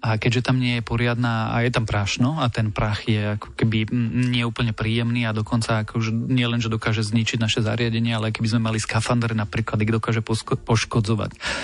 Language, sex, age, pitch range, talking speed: Slovak, male, 30-49, 110-125 Hz, 200 wpm